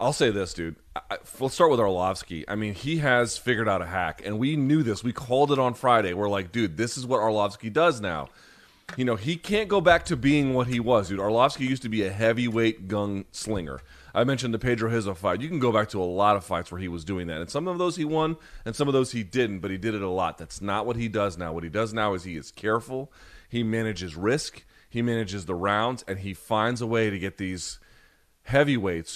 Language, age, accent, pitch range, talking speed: English, 30-49, American, 100-125 Hz, 250 wpm